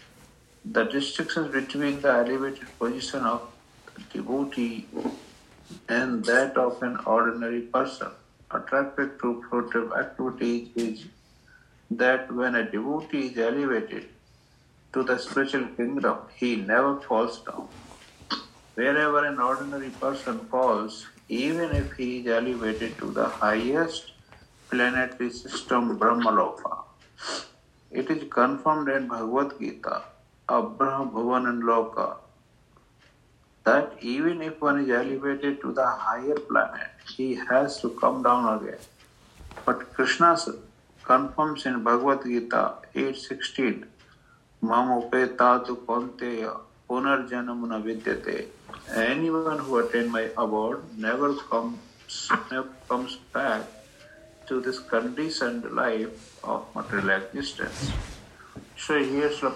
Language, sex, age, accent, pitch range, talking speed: English, male, 60-79, Indian, 120-140 Hz, 105 wpm